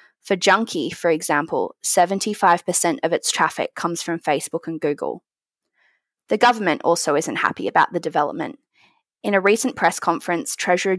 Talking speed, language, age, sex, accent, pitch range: 145 wpm, English, 20-39, female, Australian, 170-200 Hz